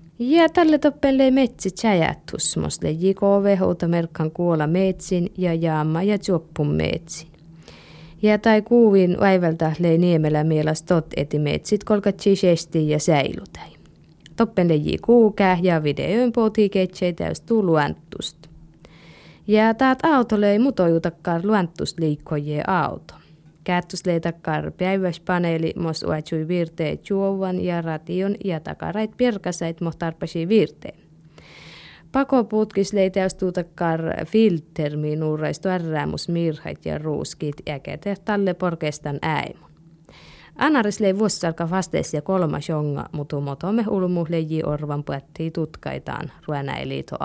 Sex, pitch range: female, 155-200 Hz